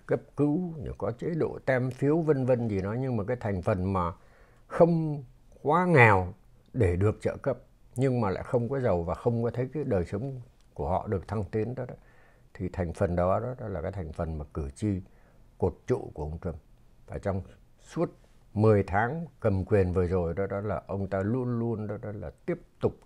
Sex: male